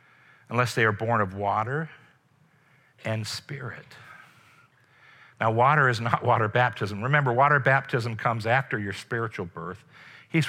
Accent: American